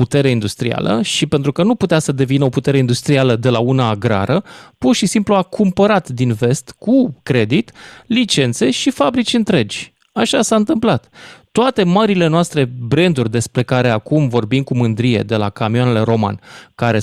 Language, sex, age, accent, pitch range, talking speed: Romanian, male, 20-39, native, 120-175 Hz, 165 wpm